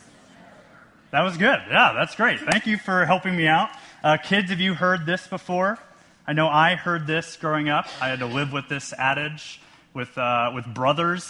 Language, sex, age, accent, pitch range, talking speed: English, male, 30-49, American, 135-175 Hz, 195 wpm